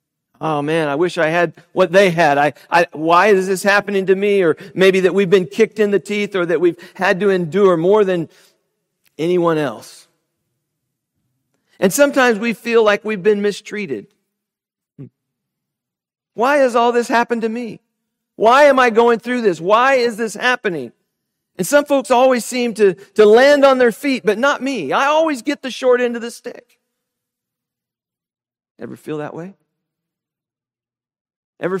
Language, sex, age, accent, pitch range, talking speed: English, male, 50-69, American, 155-225 Hz, 165 wpm